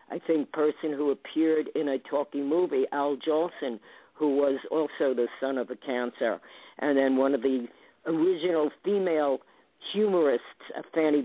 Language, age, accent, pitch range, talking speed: English, 50-69, American, 135-165 Hz, 150 wpm